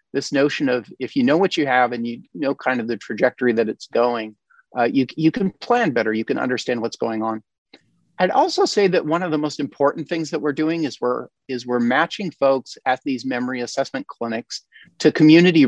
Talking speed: 215 wpm